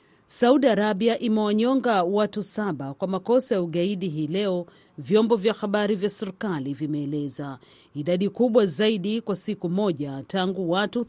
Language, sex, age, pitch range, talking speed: Swahili, female, 40-59, 170-215 Hz, 135 wpm